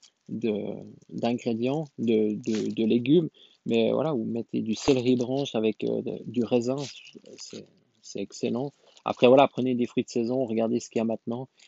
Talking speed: 175 wpm